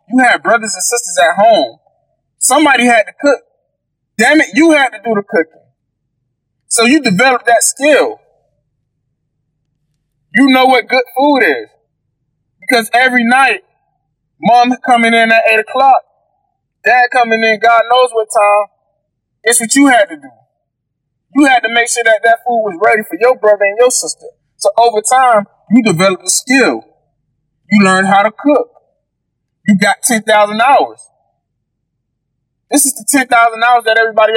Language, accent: English, American